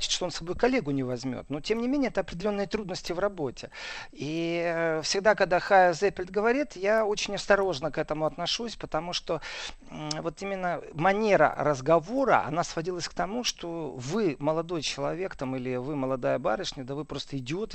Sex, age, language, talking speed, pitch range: male, 40-59, Russian, 170 wpm, 140-185 Hz